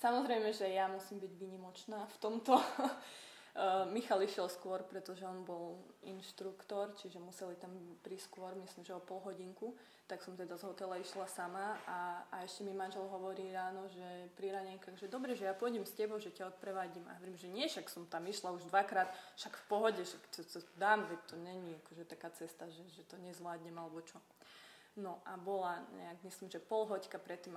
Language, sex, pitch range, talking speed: Slovak, female, 180-210 Hz, 190 wpm